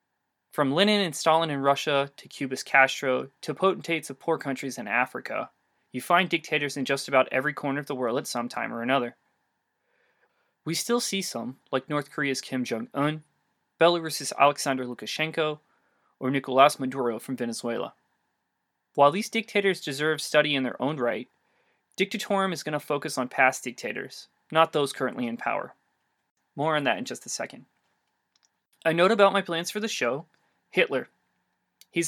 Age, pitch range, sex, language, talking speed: 20-39, 130-170 Hz, male, English, 165 wpm